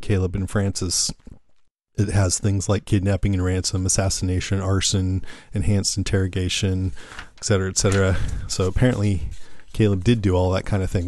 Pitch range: 95-110 Hz